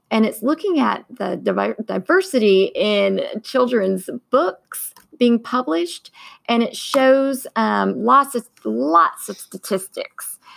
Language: English